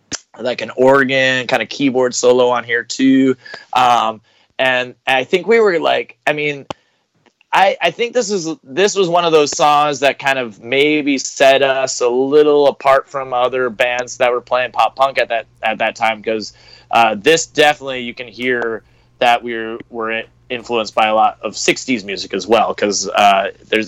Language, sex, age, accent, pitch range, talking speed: English, male, 20-39, American, 120-150 Hz, 190 wpm